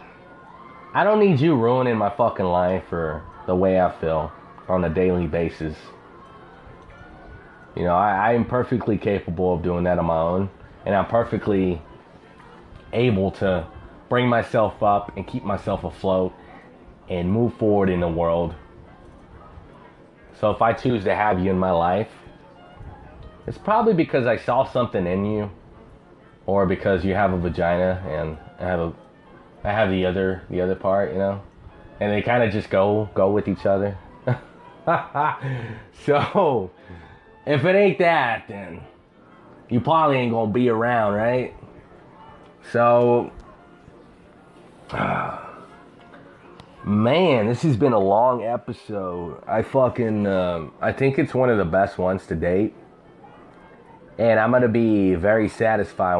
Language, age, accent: English, 30-49, American